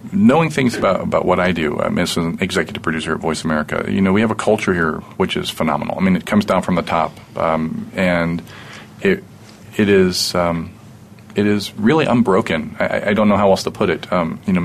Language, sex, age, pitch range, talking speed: English, male, 40-59, 85-105 Hz, 225 wpm